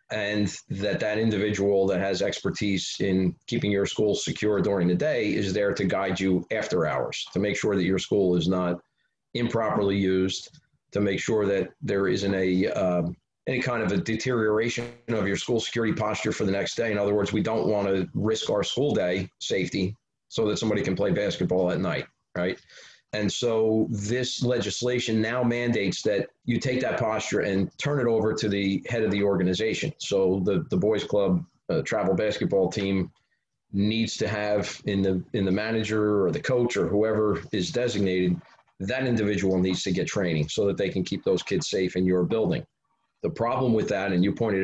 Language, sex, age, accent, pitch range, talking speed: English, male, 40-59, American, 95-110 Hz, 195 wpm